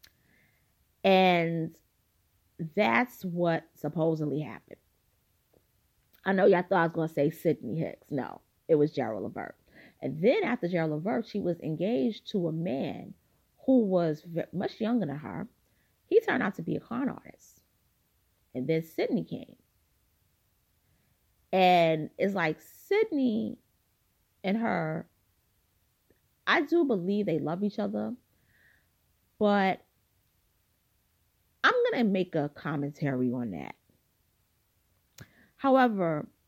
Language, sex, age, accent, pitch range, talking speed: English, female, 30-49, American, 130-205 Hz, 115 wpm